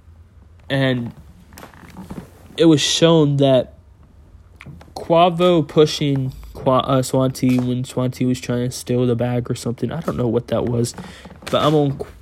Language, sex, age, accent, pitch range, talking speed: English, male, 20-39, American, 115-135 Hz, 135 wpm